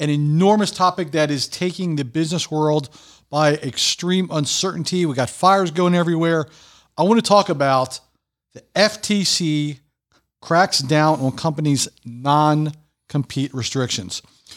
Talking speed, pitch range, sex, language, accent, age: 125 wpm, 130-180 Hz, male, English, American, 40-59